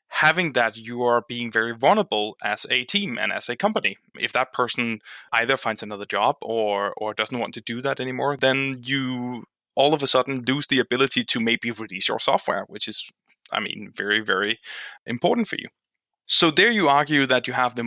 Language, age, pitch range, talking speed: English, 20-39, 115-160 Hz, 200 wpm